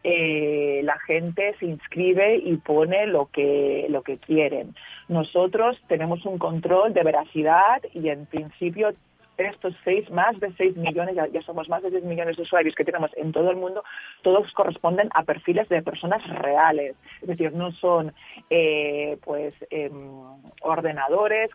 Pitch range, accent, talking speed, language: 155-190 Hz, Spanish, 160 wpm, Spanish